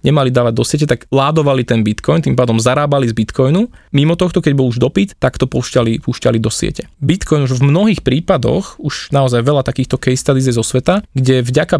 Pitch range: 125-150 Hz